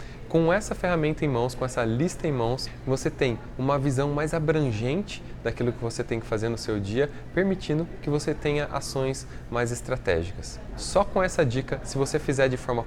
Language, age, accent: Portuguese, 20-39, Brazilian